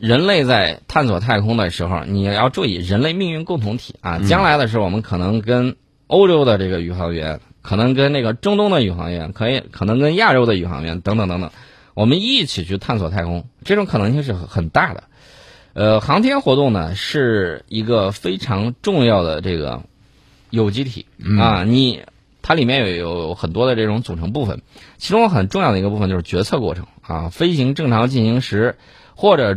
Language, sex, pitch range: Chinese, male, 95-130 Hz